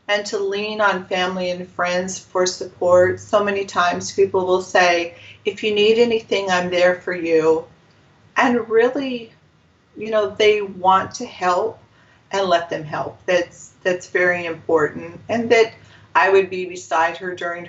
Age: 40-59